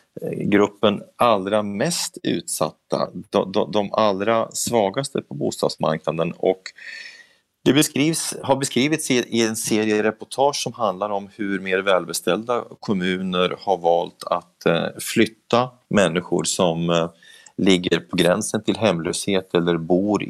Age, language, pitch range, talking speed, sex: 30-49, Swedish, 85-115 Hz, 110 wpm, male